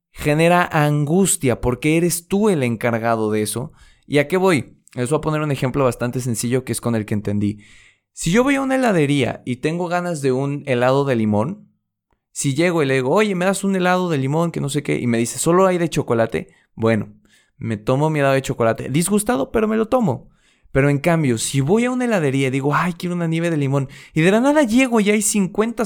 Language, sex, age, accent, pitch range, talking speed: Spanish, male, 20-39, Mexican, 125-170 Hz, 230 wpm